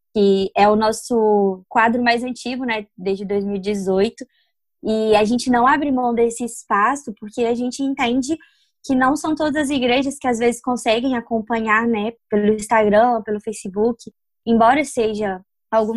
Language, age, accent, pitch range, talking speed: Portuguese, 20-39, Brazilian, 215-255 Hz, 155 wpm